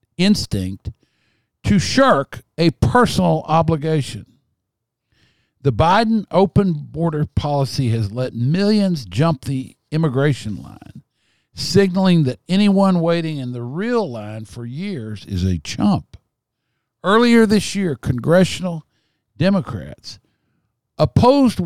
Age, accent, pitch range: 60-79, American, 110-165 Hz